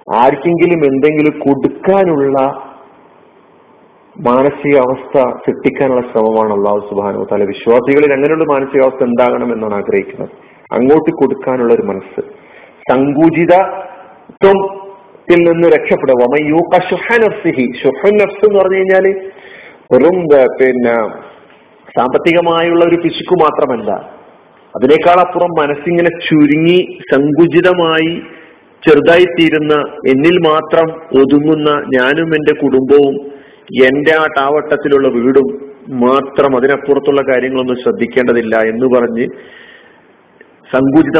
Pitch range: 130-175 Hz